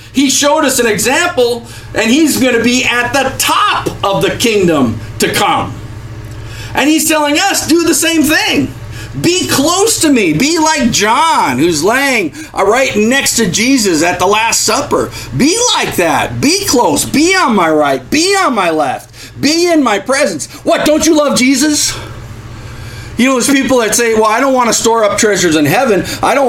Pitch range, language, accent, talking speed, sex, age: 205-295 Hz, English, American, 190 wpm, male, 40-59